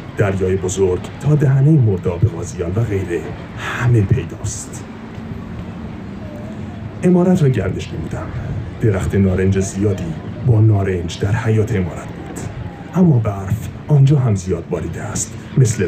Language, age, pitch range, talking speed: Persian, 40-59, 95-115 Hz, 115 wpm